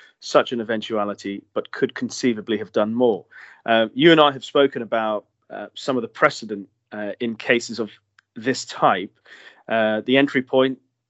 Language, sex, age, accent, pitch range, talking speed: English, male, 30-49, British, 110-130 Hz, 170 wpm